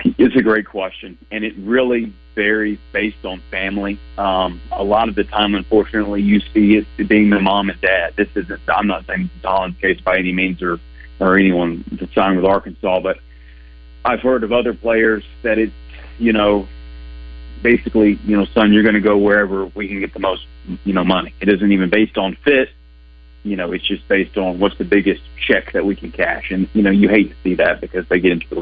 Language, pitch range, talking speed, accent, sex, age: English, 85-105 Hz, 215 wpm, American, male, 40-59